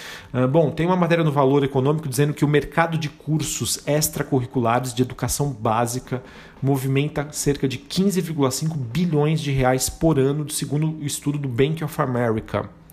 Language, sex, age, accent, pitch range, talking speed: Portuguese, male, 40-59, Brazilian, 125-145 Hz, 155 wpm